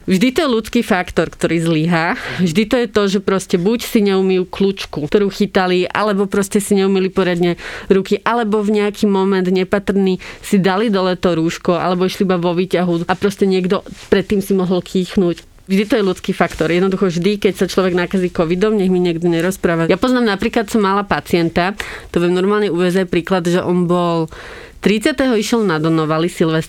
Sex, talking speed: female, 180 wpm